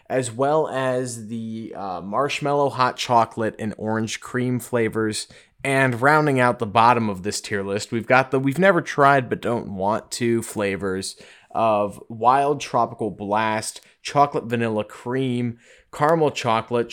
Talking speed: 145 wpm